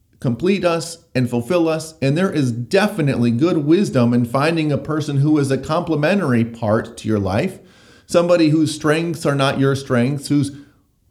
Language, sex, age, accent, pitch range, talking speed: English, male, 40-59, American, 125-165 Hz, 165 wpm